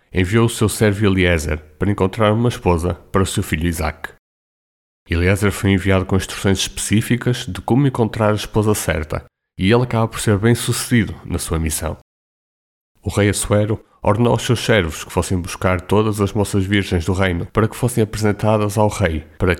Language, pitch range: Portuguese, 90-110 Hz